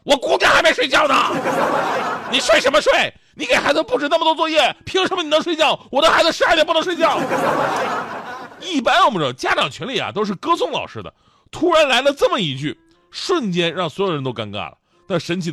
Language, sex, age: Chinese, male, 30-49